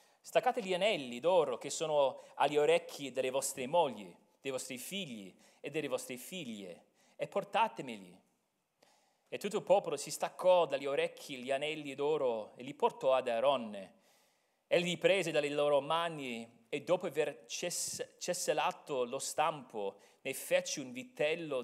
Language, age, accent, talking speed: Italian, 30-49, native, 145 wpm